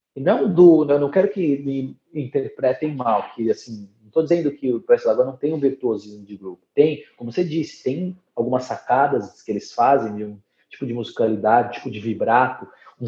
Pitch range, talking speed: 125-180 Hz, 195 wpm